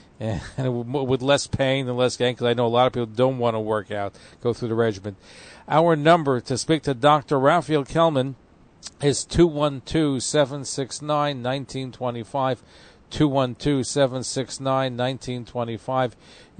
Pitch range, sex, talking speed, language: 115-145 Hz, male, 125 wpm, English